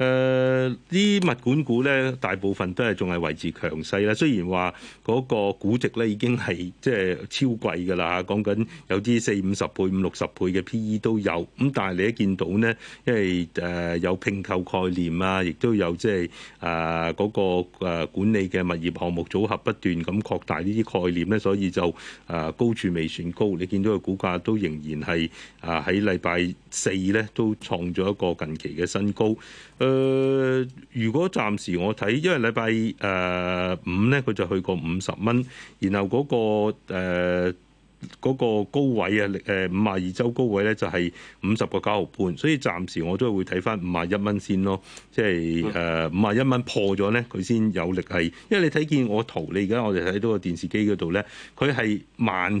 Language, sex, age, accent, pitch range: Chinese, male, 30-49, native, 90-120 Hz